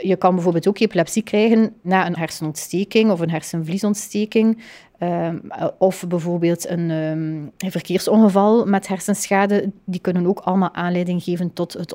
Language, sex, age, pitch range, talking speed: Dutch, female, 30-49, 175-210 Hz, 130 wpm